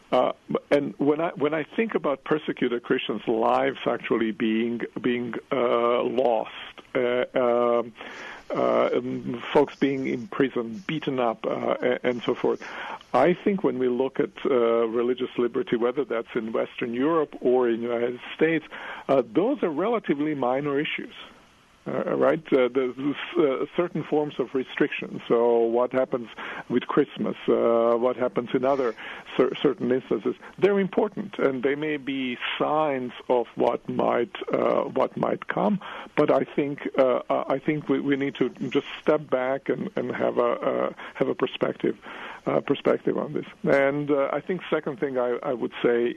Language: English